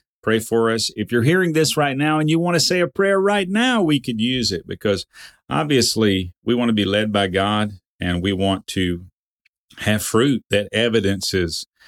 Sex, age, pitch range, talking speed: male, 40-59, 95-120 Hz, 195 wpm